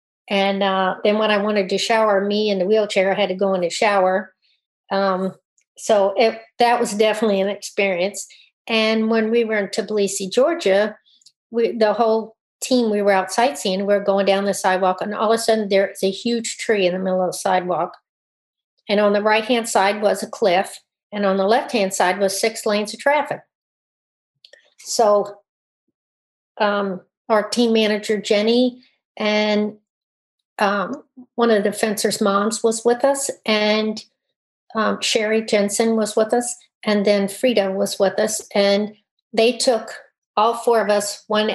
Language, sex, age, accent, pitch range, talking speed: English, female, 50-69, American, 195-230 Hz, 165 wpm